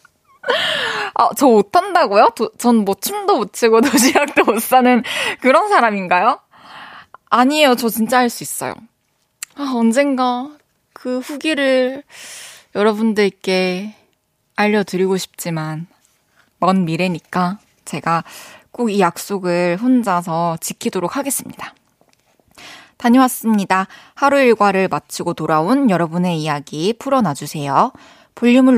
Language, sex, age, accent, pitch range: Korean, female, 20-39, native, 175-255 Hz